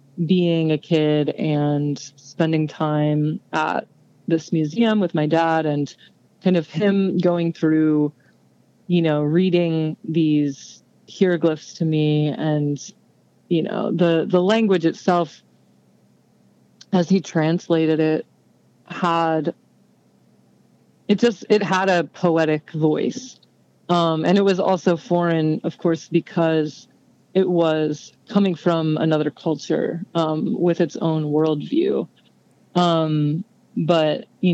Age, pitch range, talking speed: 30-49, 150-175 Hz, 115 wpm